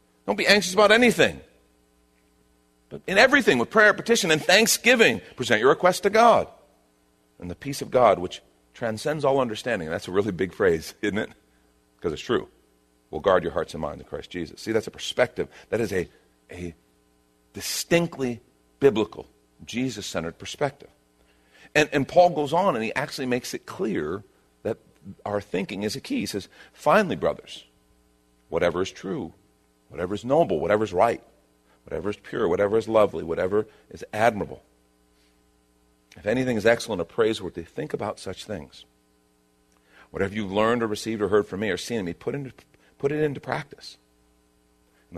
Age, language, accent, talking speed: 50-69, English, American, 165 wpm